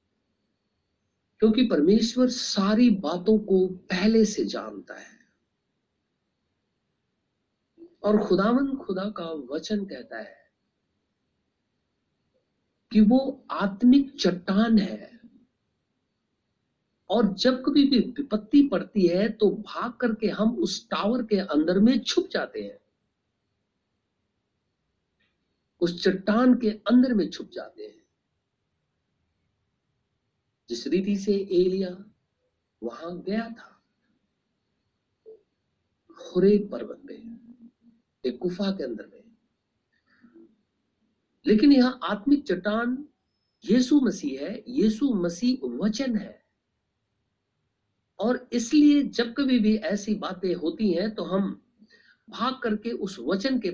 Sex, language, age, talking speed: male, Hindi, 60-79, 95 wpm